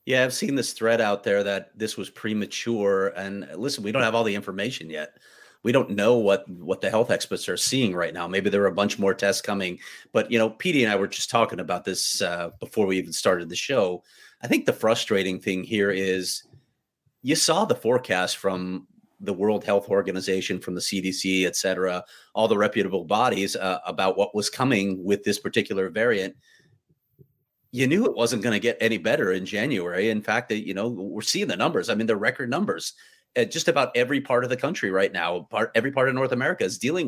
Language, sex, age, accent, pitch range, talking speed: English, male, 30-49, American, 95-120 Hz, 215 wpm